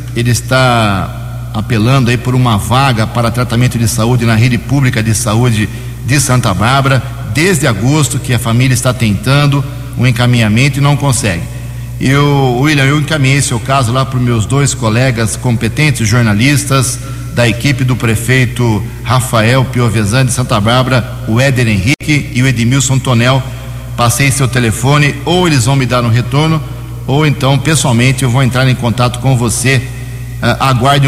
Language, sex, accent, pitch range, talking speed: Portuguese, male, Brazilian, 120-135 Hz, 160 wpm